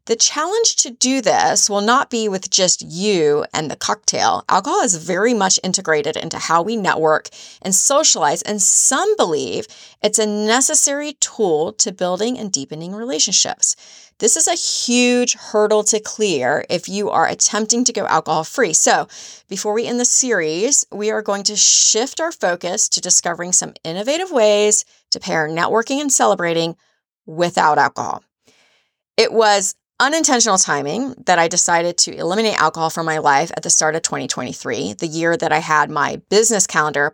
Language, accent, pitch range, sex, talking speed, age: English, American, 165-240 Hz, female, 165 wpm, 30-49